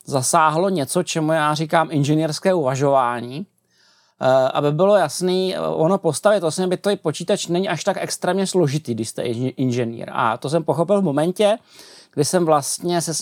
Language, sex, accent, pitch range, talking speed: Czech, male, native, 150-175 Hz, 160 wpm